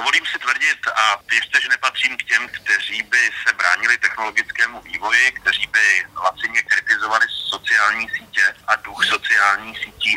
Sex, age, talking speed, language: male, 40-59, 150 wpm, Slovak